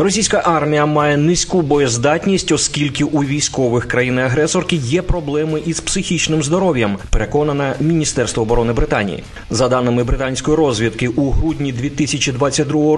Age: 30-49